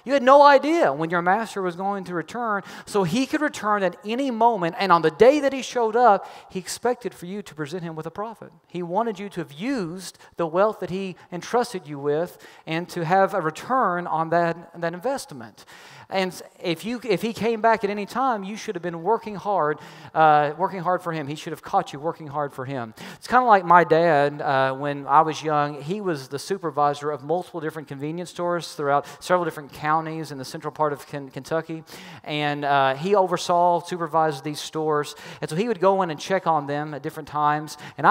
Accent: American